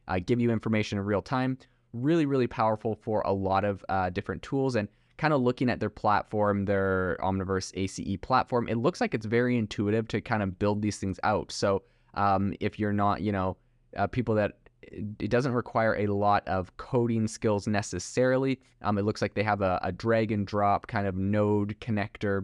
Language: English